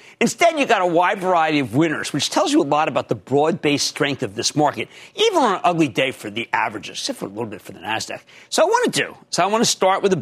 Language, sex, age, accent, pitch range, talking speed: English, male, 50-69, American, 135-200 Hz, 280 wpm